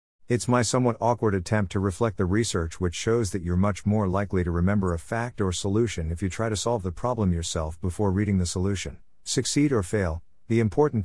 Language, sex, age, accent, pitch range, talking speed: English, male, 50-69, American, 90-115 Hz, 210 wpm